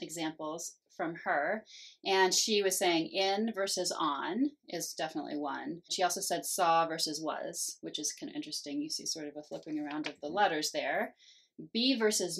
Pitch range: 165-245 Hz